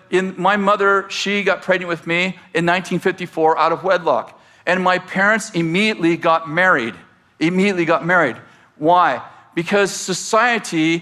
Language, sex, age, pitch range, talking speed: English, male, 50-69, 165-200 Hz, 135 wpm